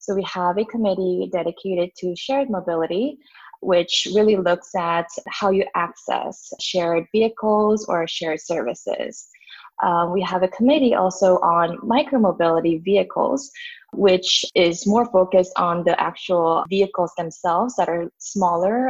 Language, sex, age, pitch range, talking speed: English, female, 20-39, 170-220 Hz, 135 wpm